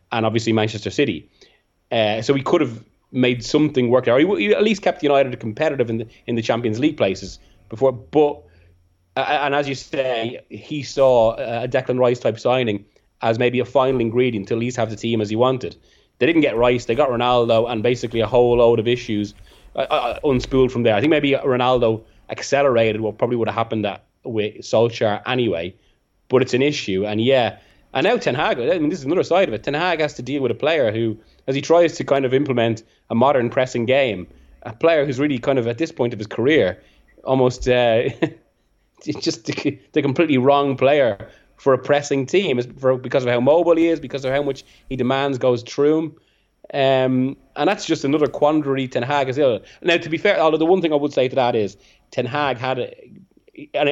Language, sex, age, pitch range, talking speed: English, male, 20-39, 115-140 Hz, 215 wpm